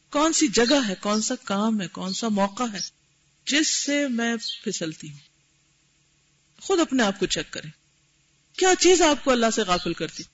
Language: Urdu